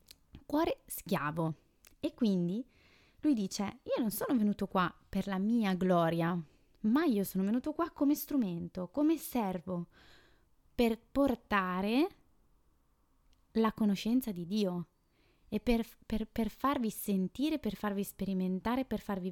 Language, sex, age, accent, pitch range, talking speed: Italian, female, 20-39, native, 180-225 Hz, 125 wpm